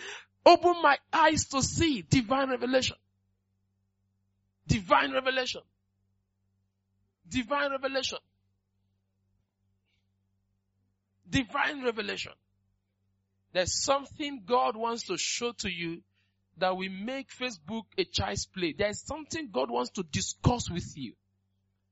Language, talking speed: English, 100 wpm